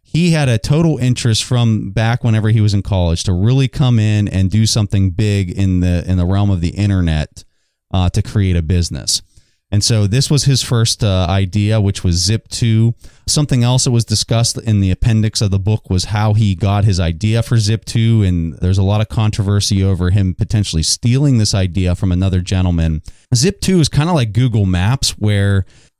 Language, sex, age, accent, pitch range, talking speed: English, male, 30-49, American, 95-120 Hz, 200 wpm